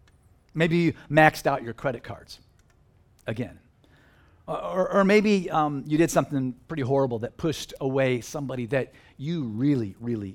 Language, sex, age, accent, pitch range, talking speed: English, male, 50-69, American, 125-190 Hz, 145 wpm